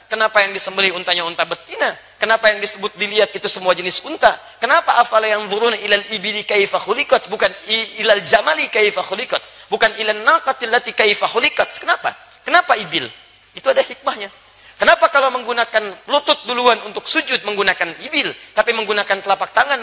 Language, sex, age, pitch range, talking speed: Indonesian, male, 30-49, 195-260 Hz, 150 wpm